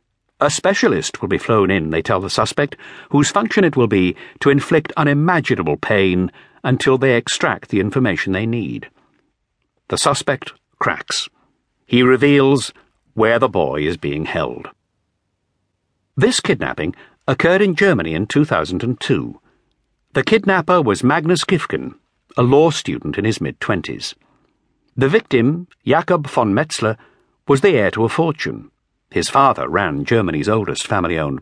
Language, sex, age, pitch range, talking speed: English, male, 60-79, 105-145 Hz, 140 wpm